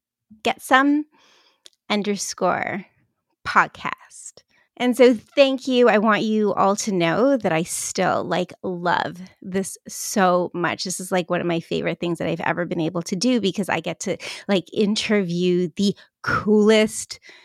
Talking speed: 155 wpm